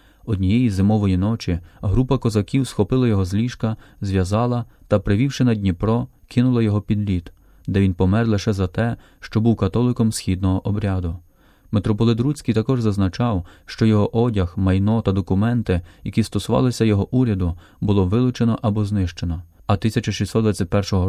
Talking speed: 140 wpm